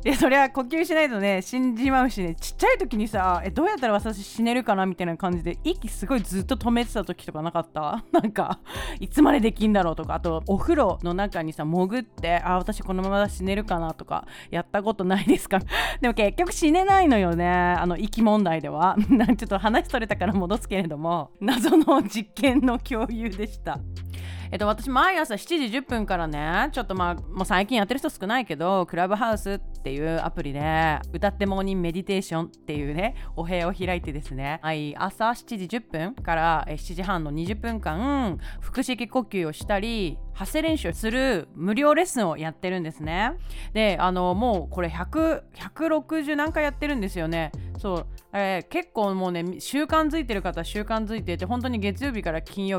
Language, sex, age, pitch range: Japanese, female, 30-49, 175-260 Hz